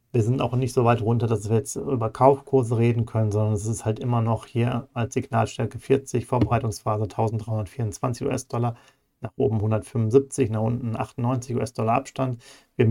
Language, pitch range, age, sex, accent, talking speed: German, 110-130 Hz, 40-59, male, German, 165 wpm